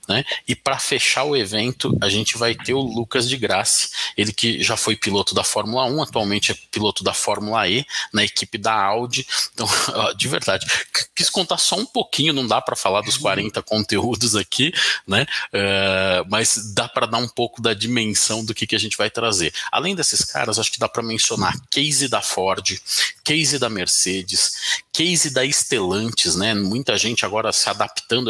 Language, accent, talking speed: Portuguese, Brazilian, 185 wpm